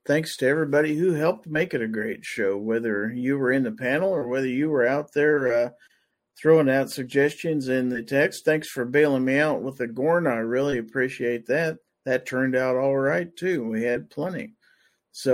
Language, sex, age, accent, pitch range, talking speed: English, male, 50-69, American, 125-150 Hz, 200 wpm